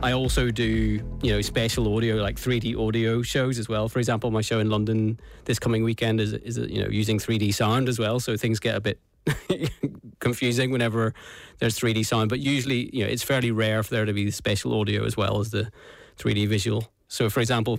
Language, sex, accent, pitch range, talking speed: English, male, British, 105-115 Hz, 215 wpm